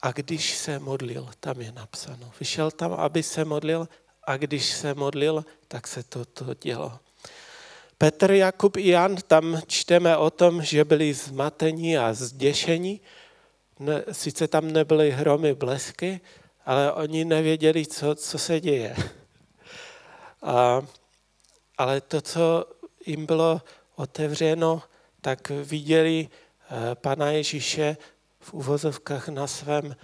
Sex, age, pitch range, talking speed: male, 40-59, 140-160 Hz, 125 wpm